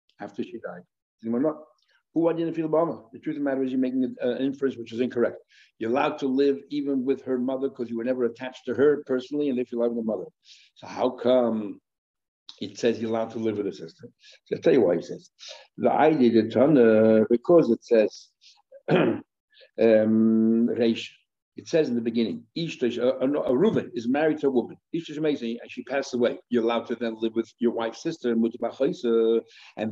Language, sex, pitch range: English, male, 115-140 Hz